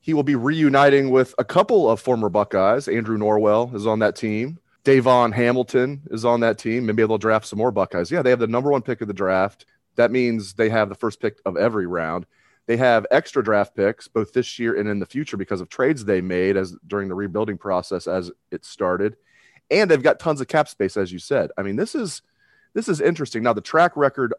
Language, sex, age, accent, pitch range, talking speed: English, male, 30-49, American, 105-135 Hz, 230 wpm